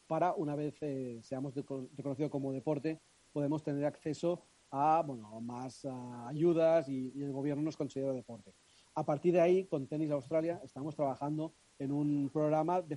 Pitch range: 135-155 Hz